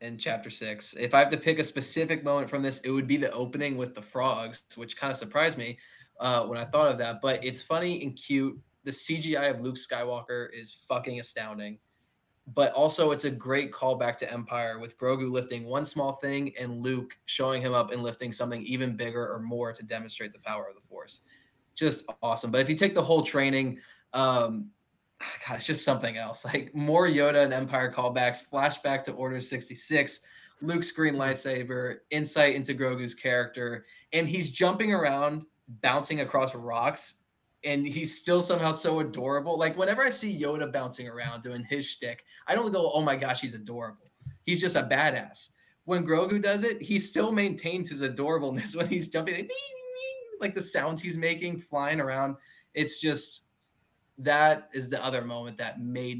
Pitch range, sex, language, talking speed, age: 120-155 Hz, male, English, 185 wpm, 20-39